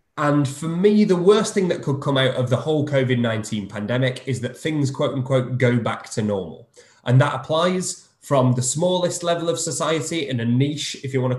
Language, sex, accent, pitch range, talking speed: English, male, British, 120-150 Hz, 210 wpm